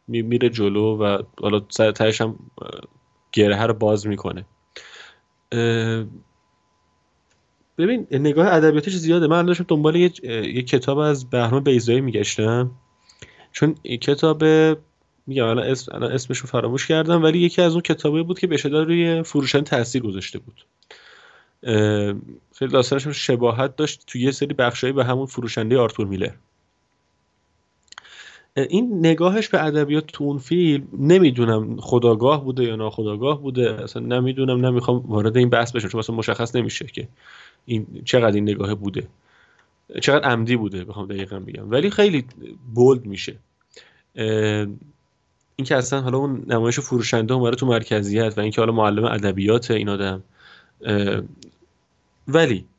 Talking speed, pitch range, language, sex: 130 wpm, 110-145 Hz, Persian, male